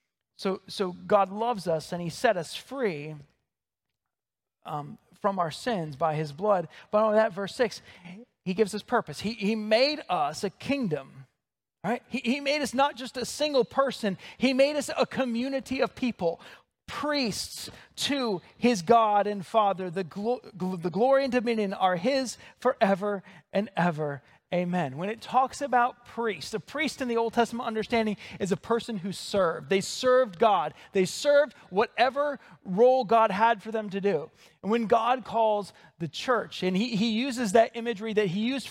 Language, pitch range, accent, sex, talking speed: English, 195-245 Hz, American, male, 170 wpm